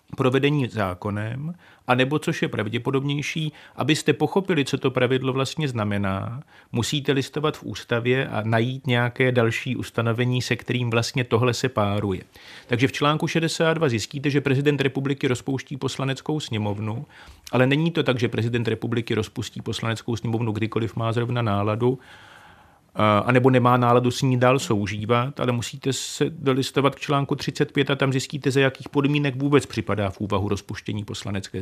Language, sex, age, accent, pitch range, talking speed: Czech, male, 40-59, native, 115-140 Hz, 155 wpm